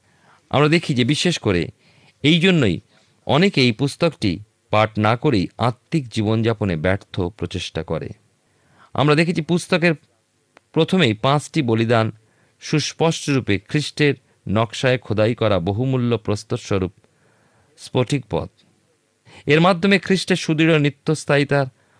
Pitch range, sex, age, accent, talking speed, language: 105-150 Hz, male, 50-69, native, 105 wpm, Bengali